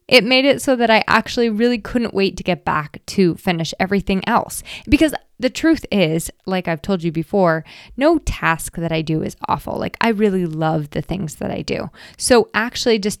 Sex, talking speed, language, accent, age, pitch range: female, 205 wpm, English, American, 20-39, 175-220 Hz